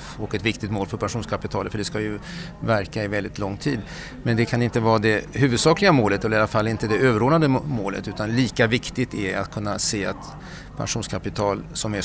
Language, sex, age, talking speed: Swedish, male, 40-59, 210 wpm